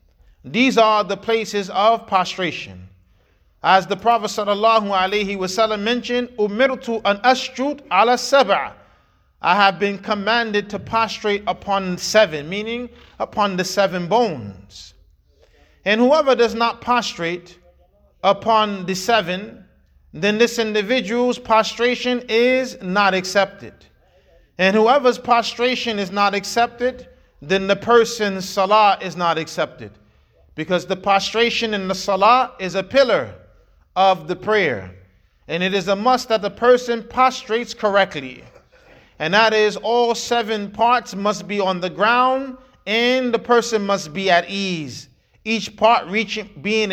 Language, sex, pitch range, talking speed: English, male, 185-230 Hz, 125 wpm